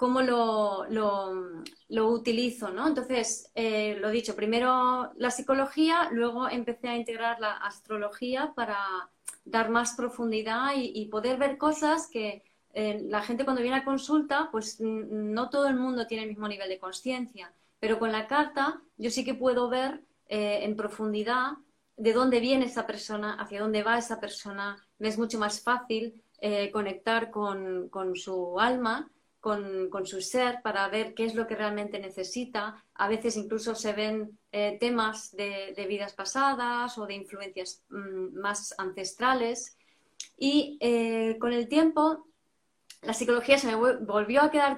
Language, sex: Spanish, female